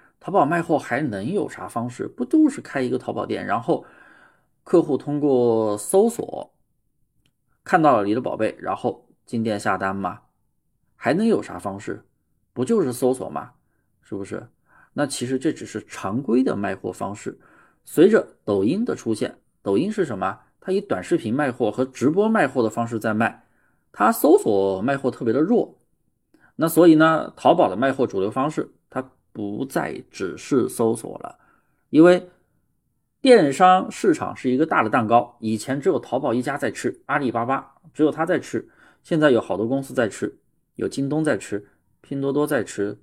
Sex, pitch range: male, 115-160 Hz